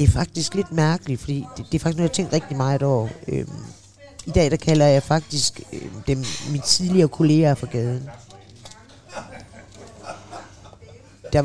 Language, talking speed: Danish, 170 wpm